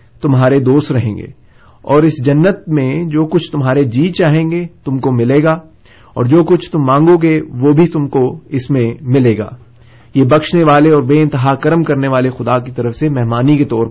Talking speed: 205 wpm